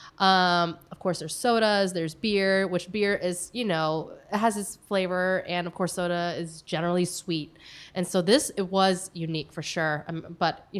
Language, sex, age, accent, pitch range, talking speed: English, female, 20-39, American, 170-205 Hz, 190 wpm